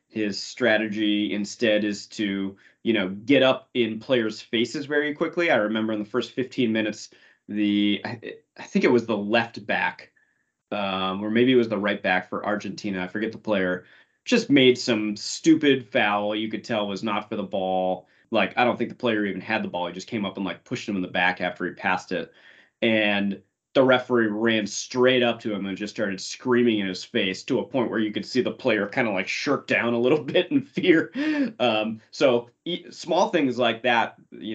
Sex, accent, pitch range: male, American, 100-125 Hz